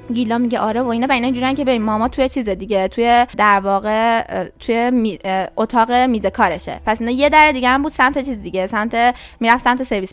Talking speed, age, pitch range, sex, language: 205 wpm, 20-39, 225-305 Hz, female, Persian